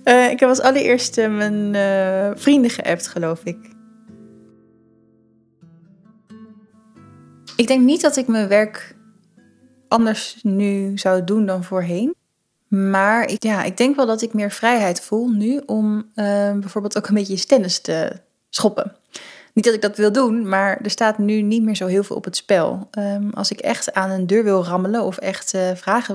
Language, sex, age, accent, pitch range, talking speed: Dutch, female, 20-39, Dutch, 195-235 Hz, 170 wpm